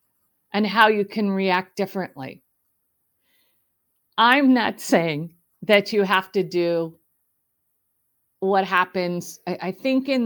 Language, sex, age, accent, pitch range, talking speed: English, female, 50-69, American, 175-230 Hz, 115 wpm